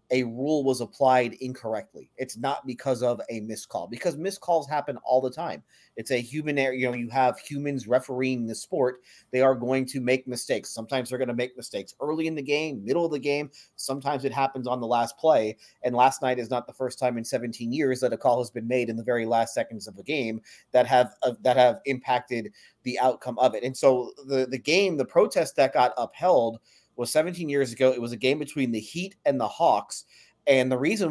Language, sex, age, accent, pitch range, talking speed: English, male, 30-49, American, 125-140 Hz, 230 wpm